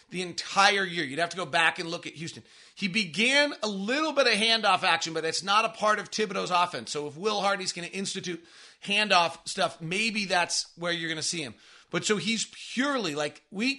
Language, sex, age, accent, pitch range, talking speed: English, male, 30-49, American, 170-210 Hz, 220 wpm